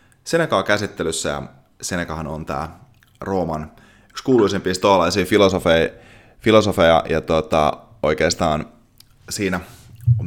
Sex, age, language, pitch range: male, 20-39, Finnish, 85-115 Hz